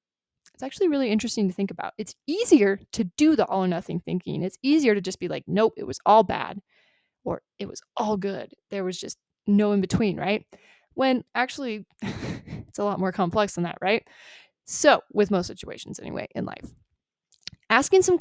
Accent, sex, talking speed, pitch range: American, female, 190 wpm, 190-255 Hz